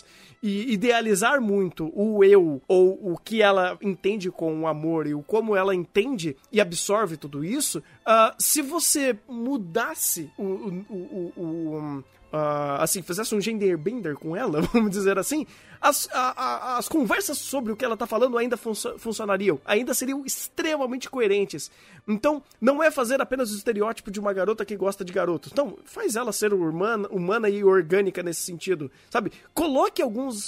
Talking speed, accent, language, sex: 170 wpm, Brazilian, Portuguese, male